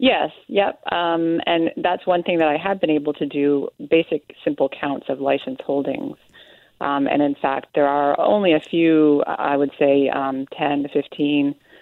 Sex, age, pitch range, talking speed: female, 30-49, 140-160 Hz, 185 wpm